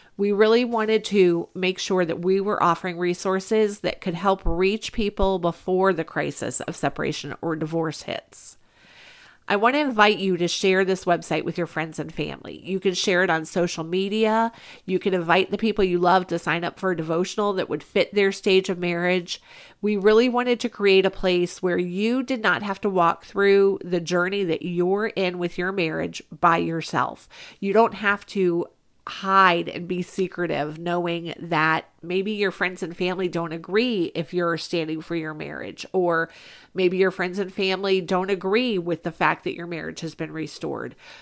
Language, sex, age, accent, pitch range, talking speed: English, female, 40-59, American, 175-205 Hz, 190 wpm